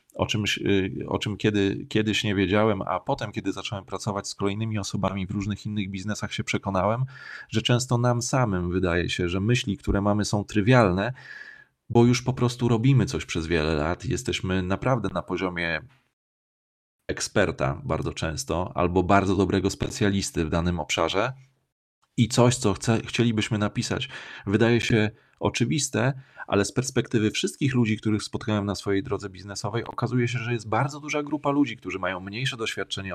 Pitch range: 100-120 Hz